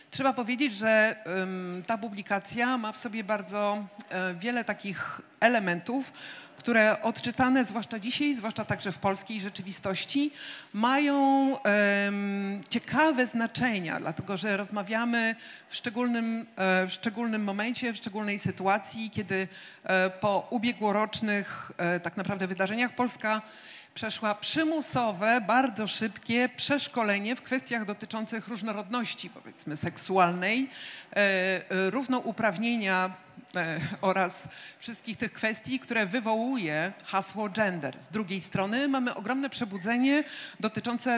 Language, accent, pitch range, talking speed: Polish, native, 195-240 Hz, 100 wpm